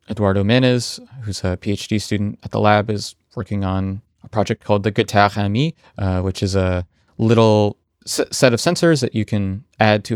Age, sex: 20-39, male